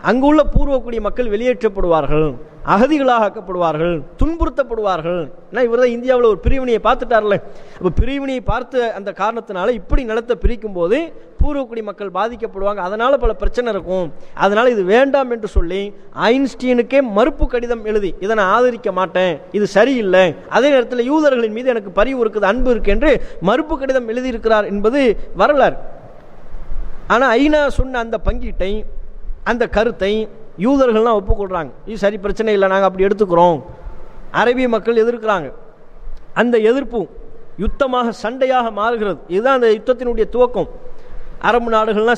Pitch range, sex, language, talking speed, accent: 200-245 Hz, male, English, 130 wpm, Indian